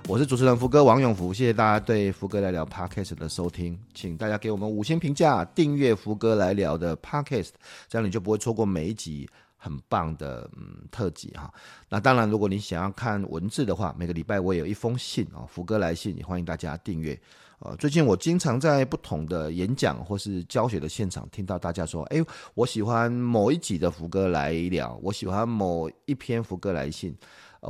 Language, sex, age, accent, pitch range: Chinese, male, 30-49, native, 90-120 Hz